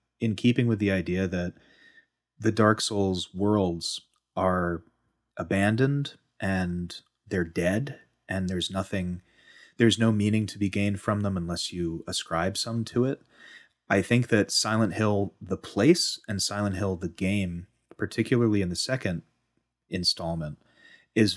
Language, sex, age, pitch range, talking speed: English, male, 30-49, 90-110 Hz, 140 wpm